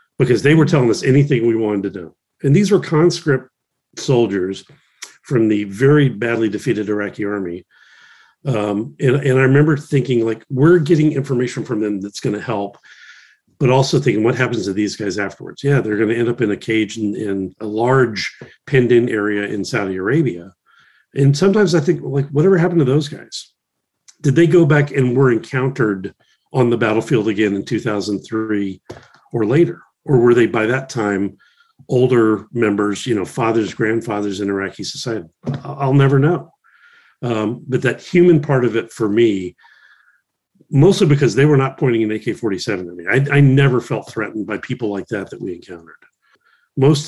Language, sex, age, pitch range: English, male, 40-59, 105-140 Hz